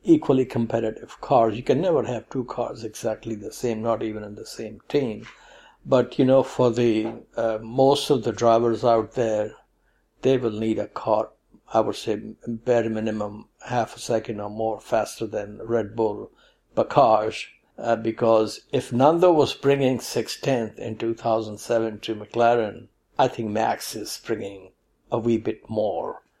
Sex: male